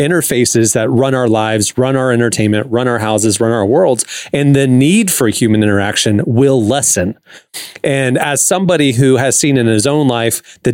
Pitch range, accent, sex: 115-140 Hz, American, male